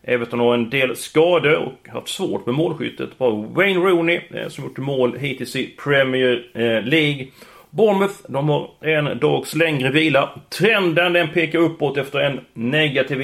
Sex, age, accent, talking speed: male, 30-49, native, 155 wpm